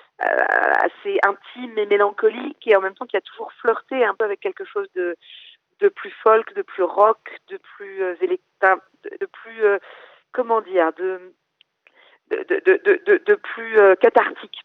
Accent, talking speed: French, 155 wpm